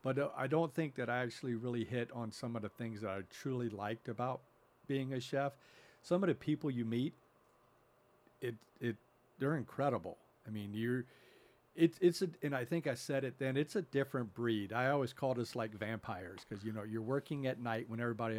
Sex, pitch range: male, 110-130 Hz